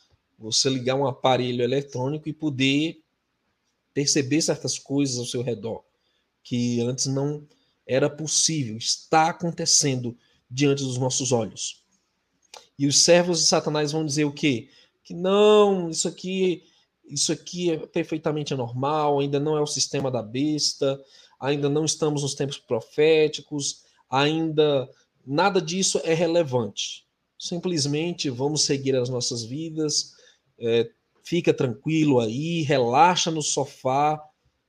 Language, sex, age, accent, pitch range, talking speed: Portuguese, male, 20-39, Brazilian, 130-155 Hz, 125 wpm